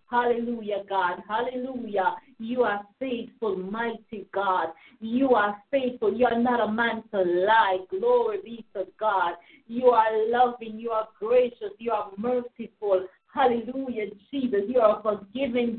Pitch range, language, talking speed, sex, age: 215-260 Hz, English, 140 wpm, female, 50-69